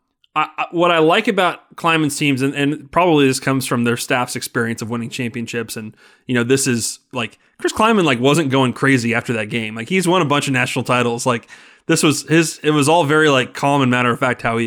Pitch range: 120-155 Hz